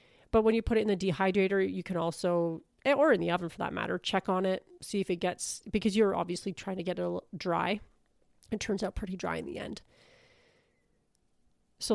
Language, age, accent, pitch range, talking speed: English, 30-49, American, 180-210 Hz, 210 wpm